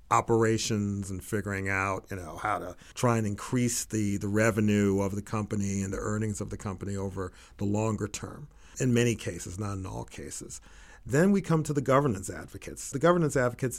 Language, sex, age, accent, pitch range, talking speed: English, male, 40-59, American, 105-115 Hz, 190 wpm